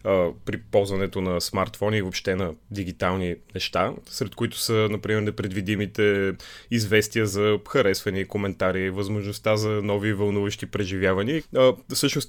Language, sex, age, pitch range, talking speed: Bulgarian, male, 20-39, 95-120 Hz, 115 wpm